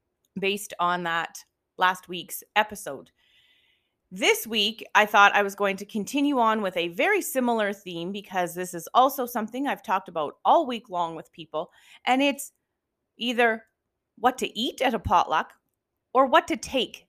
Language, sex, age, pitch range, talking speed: English, female, 30-49, 185-250 Hz, 165 wpm